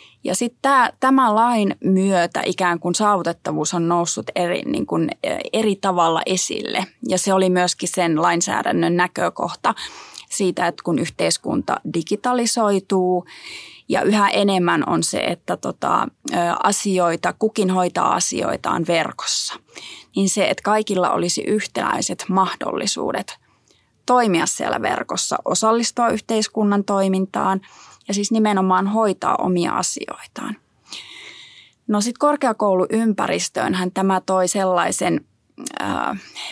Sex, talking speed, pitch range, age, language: female, 105 wpm, 180-215 Hz, 20-39, Finnish